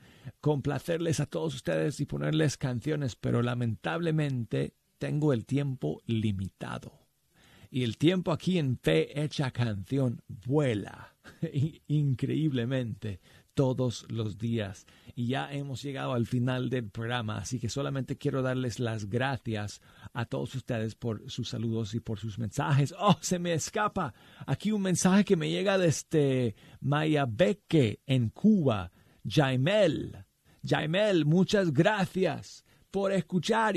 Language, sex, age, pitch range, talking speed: Spanish, male, 50-69, 120-155 Hz, 130 wpm